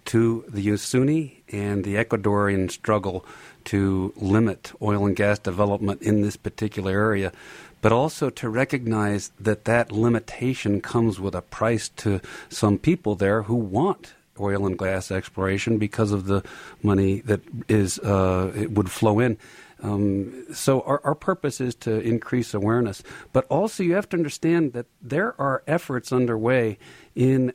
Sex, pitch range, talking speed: male, 100-125 Hz, 150 wpm